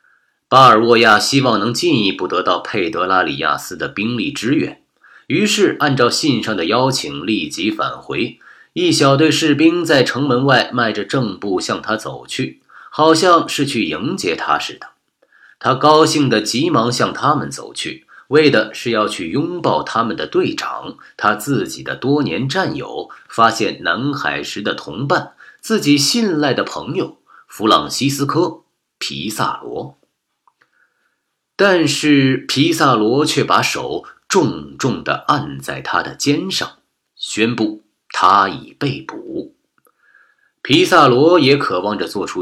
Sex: male